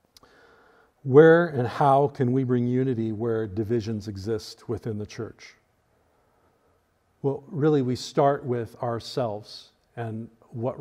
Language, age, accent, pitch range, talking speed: English, 50-69, American, 115-145 Hz, 115 wpm